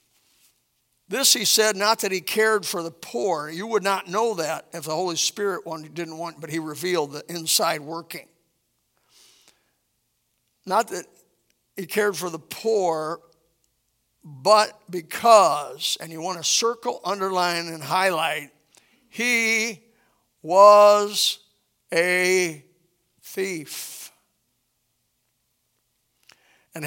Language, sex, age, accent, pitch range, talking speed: English, male, 50-69, American, 160-205 Hz, 110 wpm